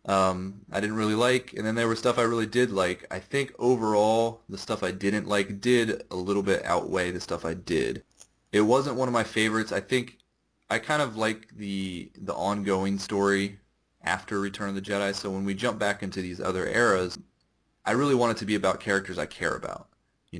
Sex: male